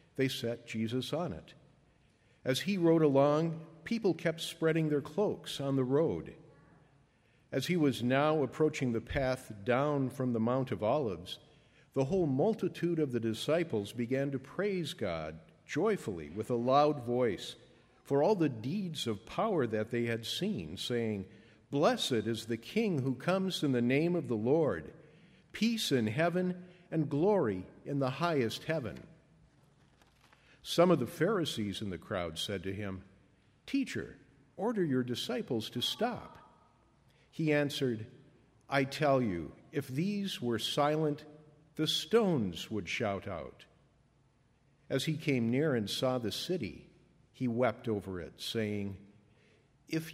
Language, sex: English, male